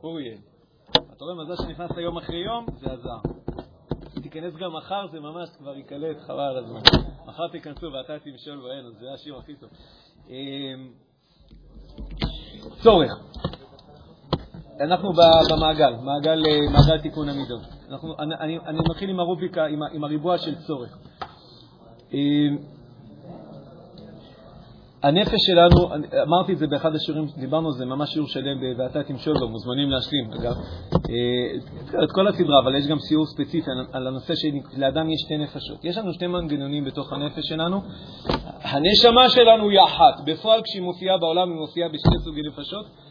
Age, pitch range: 40-59, 140-170 Hz